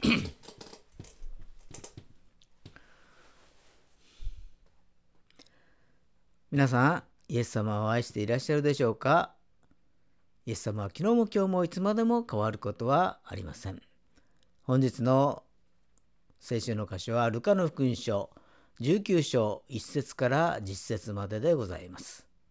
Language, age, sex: Japanese, 50-69, female